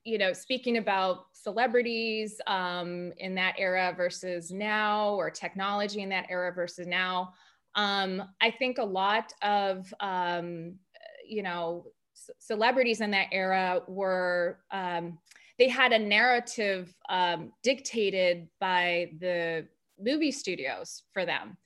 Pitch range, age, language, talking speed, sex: 185-225 Hz, 20-39, English, 125 wpm, female